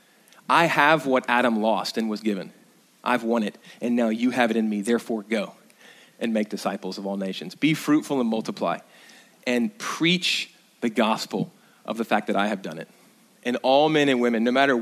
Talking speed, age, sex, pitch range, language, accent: 200 wpm, 30-49, male, 120-170 Hz, English, American